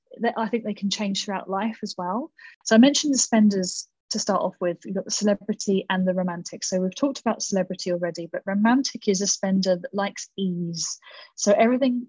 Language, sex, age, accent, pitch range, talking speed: English, female, 30-49, British, 180-220 Hz, 210 wpm